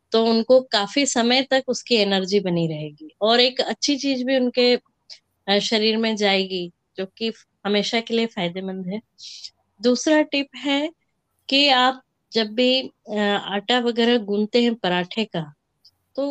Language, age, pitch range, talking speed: Hindi, 20-39, 210-260 Hz, 145 wpm